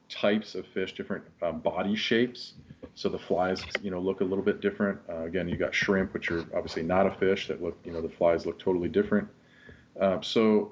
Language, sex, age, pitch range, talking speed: English, male, 40-59, 85-100 Hz, 220 wpm